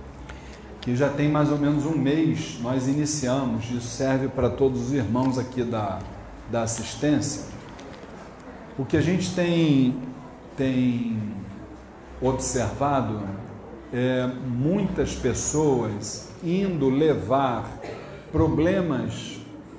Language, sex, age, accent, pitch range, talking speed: Portuguese, male, 40-59, Brazilian, 120-160 Hz, 100 wpm